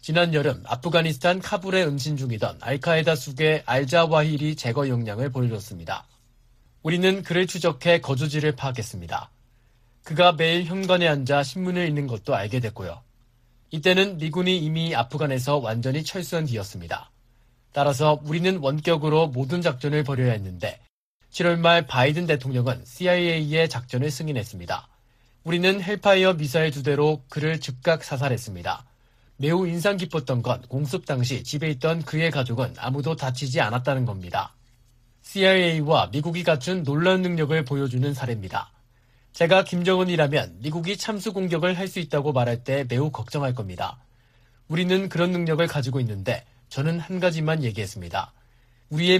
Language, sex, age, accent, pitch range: Korean, male, 40-59, native, 120-170 Hz